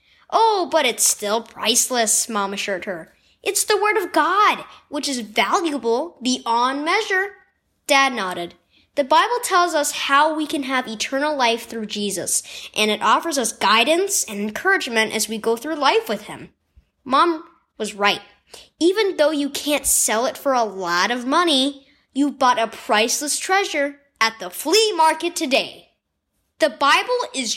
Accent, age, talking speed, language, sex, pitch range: American, 10-29, 160 wpm, English, female, 225-335 Hz